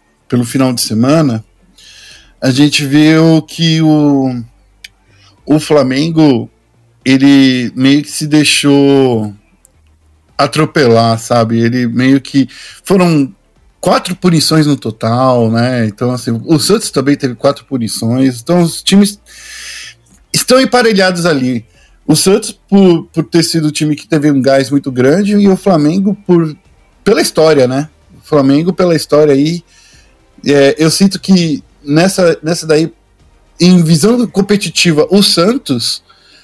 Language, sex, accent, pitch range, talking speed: Portuguese, male, Brazilian, 130-170 Hz, 130 wpm